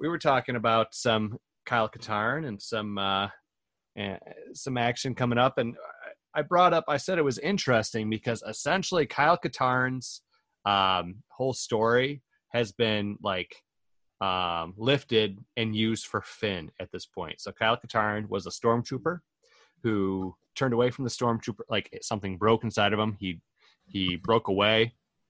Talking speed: 155 wpm